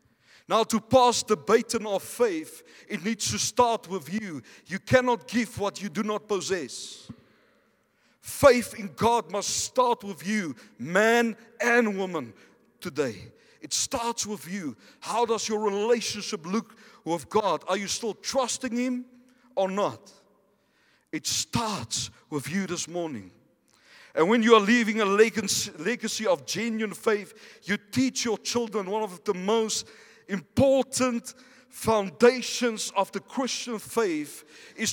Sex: male